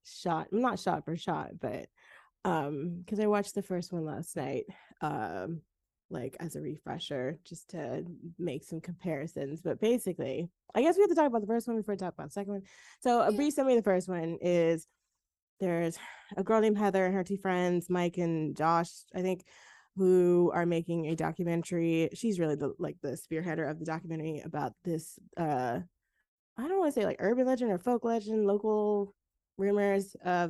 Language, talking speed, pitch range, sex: English, 195 wpm, 165-215 Hz, female